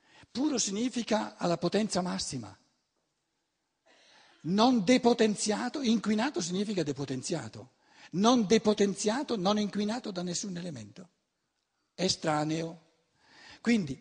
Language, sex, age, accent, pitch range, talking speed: Italian, male, 60-79, native, 140-215 Hz, 80 wpm